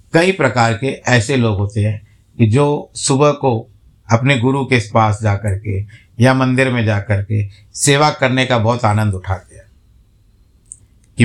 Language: Hindi